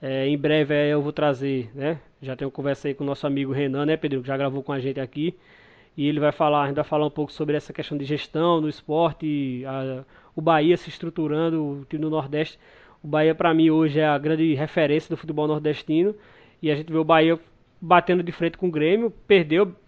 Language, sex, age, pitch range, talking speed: Portuguese, male, 20-39, 150-175 Hz, 230 wpm